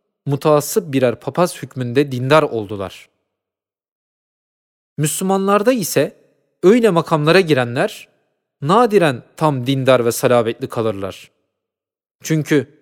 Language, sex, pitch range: Turkish, male, 135-175 Hz